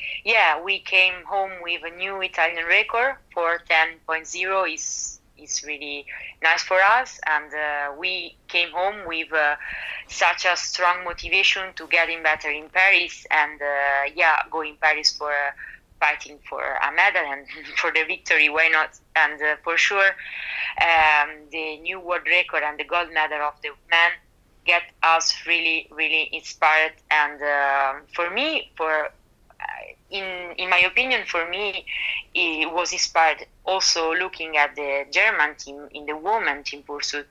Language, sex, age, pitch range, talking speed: English, female, 20-39, 150-185 Hz, 160 wpm